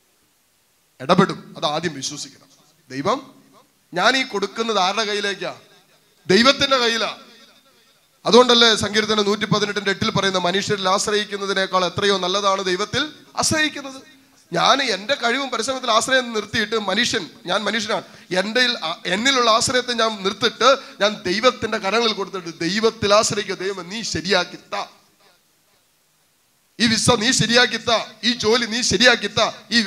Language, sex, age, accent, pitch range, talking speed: English, male, 30-49, Indian, 190-235 Hz, 100 wpm